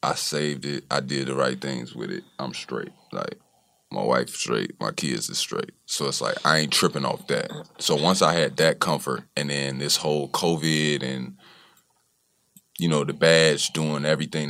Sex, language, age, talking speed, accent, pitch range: male, English, 30-49, 190 wpm, American, 70-80 Hz